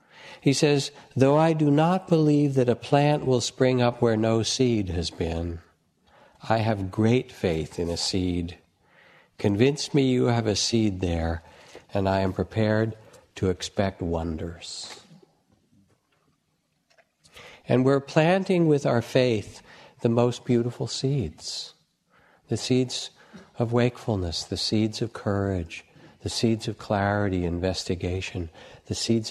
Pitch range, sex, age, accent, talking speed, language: 90-125 Hz, male, 60-79, American, 130 wpm, English